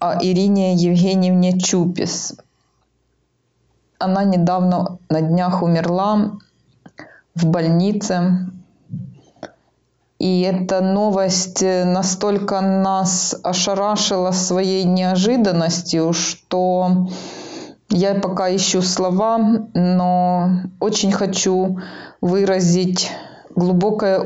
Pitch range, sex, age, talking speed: 180-200 Hz, female, 20-39, 70 wpm